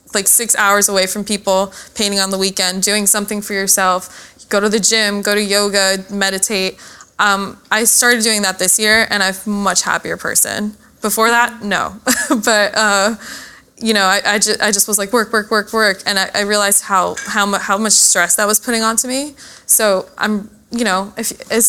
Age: 20-39